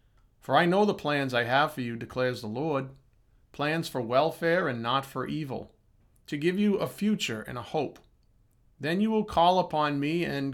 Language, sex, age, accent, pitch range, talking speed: English, male, 40-59, American, 120-165 Hz, 195 wpm